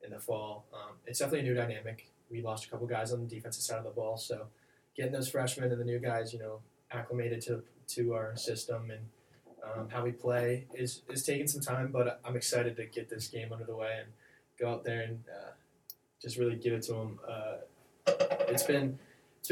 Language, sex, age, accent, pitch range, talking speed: English, male, 20-39, American, 110-120 Hz, 220 wpm